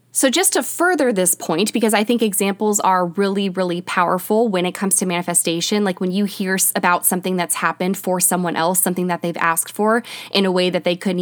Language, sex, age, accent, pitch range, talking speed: English, female, 20-39, American, 180-230 Hz, 220 wpm